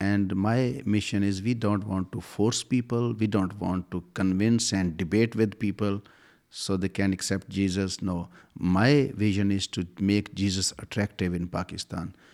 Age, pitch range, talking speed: 50-69, 95-105 Hz, 165 wpm